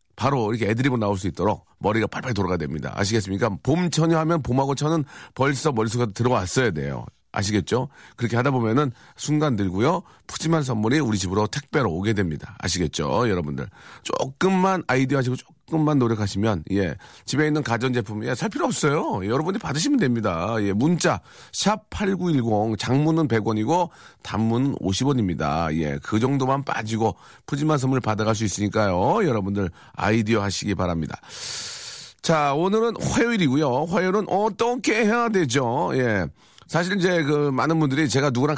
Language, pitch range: Korean, 105-155 Hz